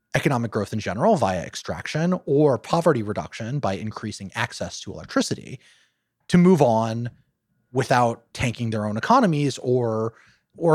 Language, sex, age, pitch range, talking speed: English, male, 30-49, 105-155 Hz, 135 wpm